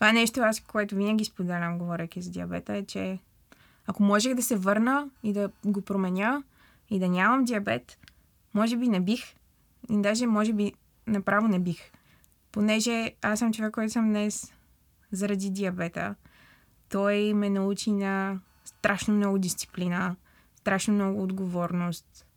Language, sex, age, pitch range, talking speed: Bulgarian, female, 20-39, 180-215 Hz, 145 wpm